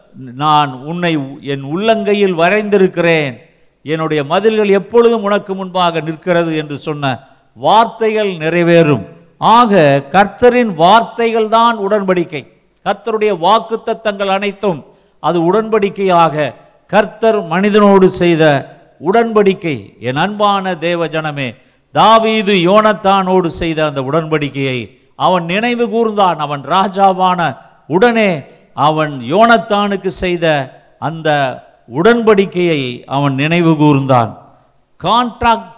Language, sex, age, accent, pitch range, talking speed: Tamil, male, 50-69, native, 155-210 Hz, 90 wpm